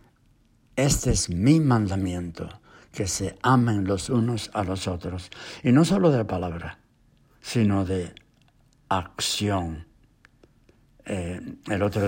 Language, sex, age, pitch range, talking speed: English, male, 60-79, 95-120 Hz, 115 wpm